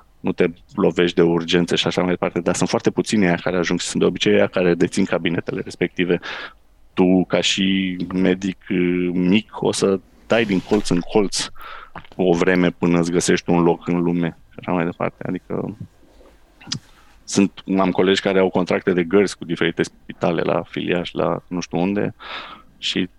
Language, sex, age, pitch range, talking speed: Romanian, male, 20-39, 90-100 Hz, 175 wpm